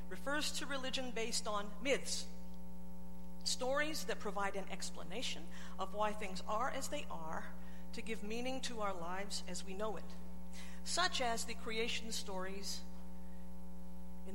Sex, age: female, 50-69